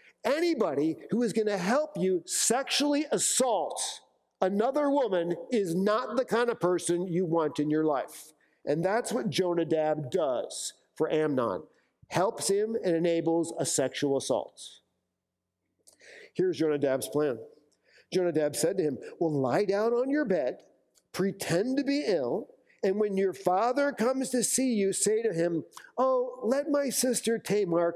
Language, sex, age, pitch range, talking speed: English, male, 50-69, 155-225 Hz, 150 wpm